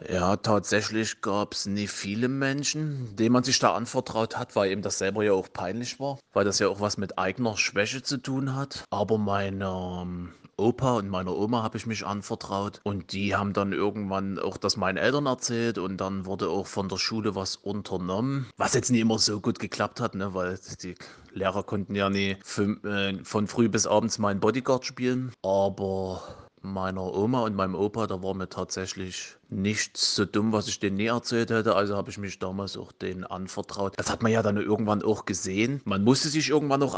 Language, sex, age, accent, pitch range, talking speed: German, male, 30-49, German, 95-115 Hz, 200 wpm